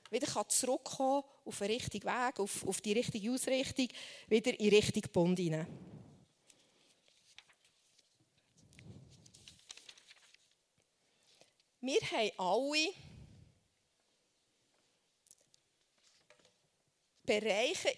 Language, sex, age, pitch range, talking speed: German, female, 40-59, 210-305 Hz, 65 wpm